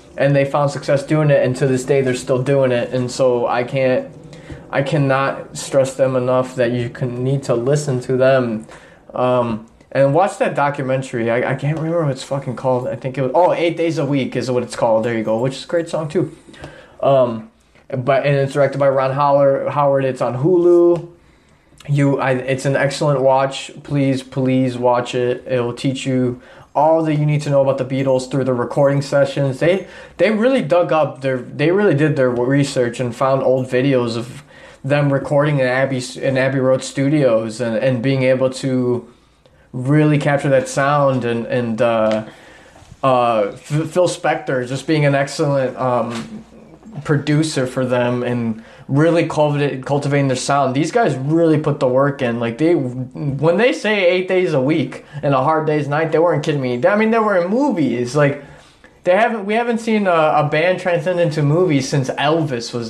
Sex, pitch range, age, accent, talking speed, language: male, 130-155 Hz, 20-39, American, 195 wpm, English